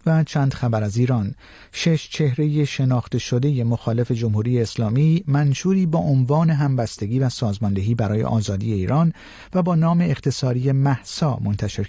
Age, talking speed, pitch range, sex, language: 50-69, 135 wpm, 105-145 Hz, male, Persian